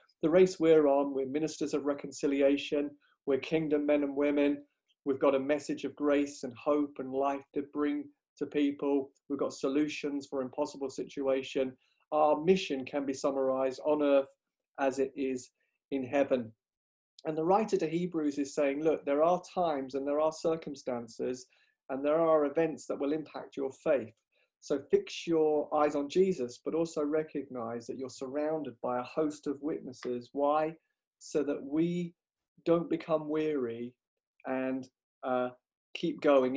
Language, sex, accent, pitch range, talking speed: English, male, British, 135-155 Hz, 160 wpm